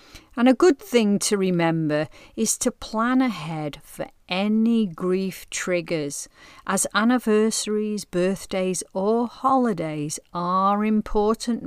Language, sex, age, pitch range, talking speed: English, female, 40-59, 165-225 Hz, 110 wpm